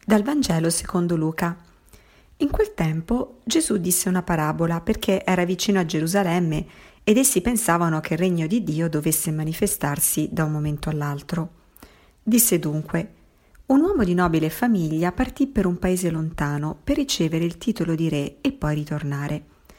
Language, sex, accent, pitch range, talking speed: Italian, female, native, 155-200 Hz, 155 wpm